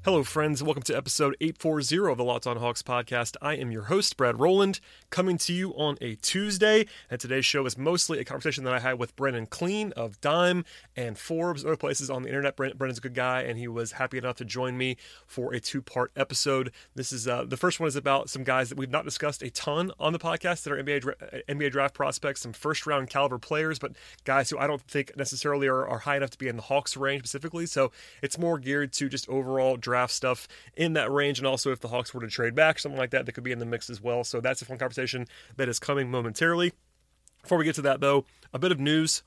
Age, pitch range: 30-49, 125-155 Hz